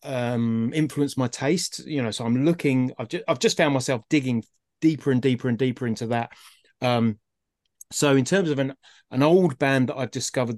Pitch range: 110-135 Hz